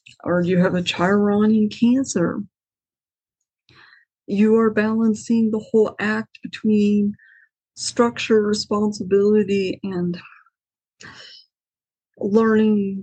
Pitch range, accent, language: 195-225 Hz, American, English